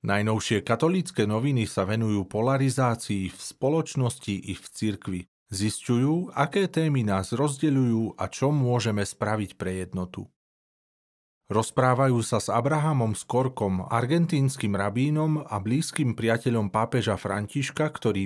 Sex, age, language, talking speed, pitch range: male, 40-59, Slovak, 115 wpm, 100-135 Hz